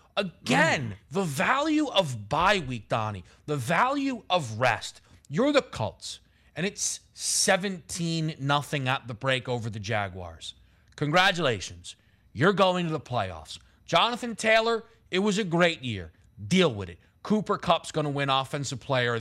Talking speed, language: 145 wpm, English